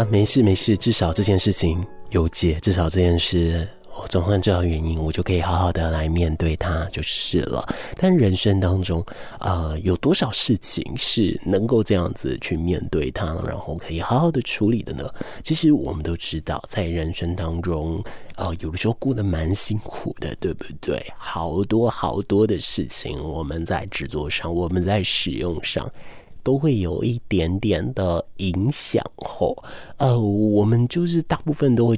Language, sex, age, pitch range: Chinese, male, 20-39, 85-110 Hz